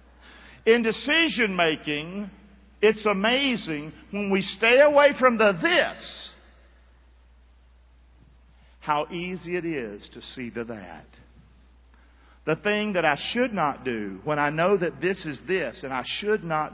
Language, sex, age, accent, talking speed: English, male, 50-69, American, 135 wpm